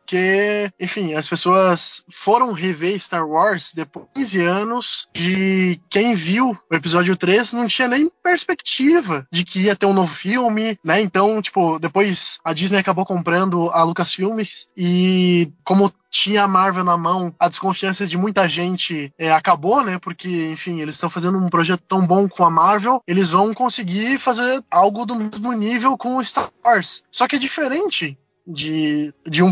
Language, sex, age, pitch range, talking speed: Portuguese, male, 20-39, 170-235 Hz, 170 wpm